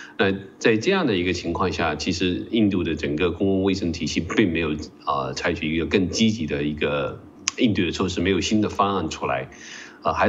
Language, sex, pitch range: Chinese, male, 80-100 Hz